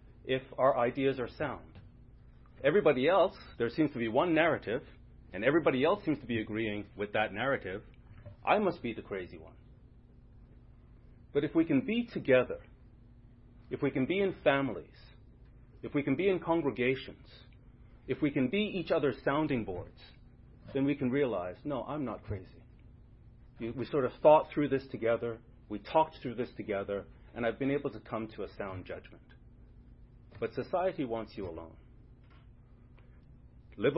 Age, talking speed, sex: 40-59, 160 wpm, male